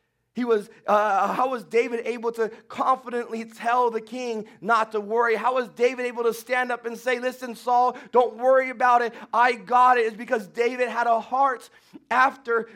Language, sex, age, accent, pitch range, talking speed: English, male, 30-49, American, 235-265 Hz, 190 wpm